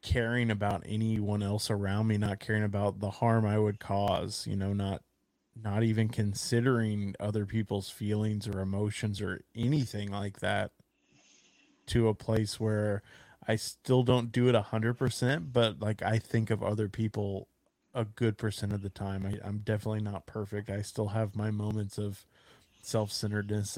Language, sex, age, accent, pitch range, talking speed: English, male, 20-39, American, 100-110 Hz, 165 wpm